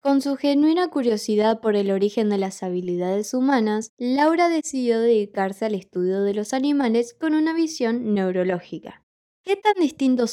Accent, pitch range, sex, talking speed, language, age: Argentinian, 200-270 Hz, female, 150 wpm, Spanish, 10-29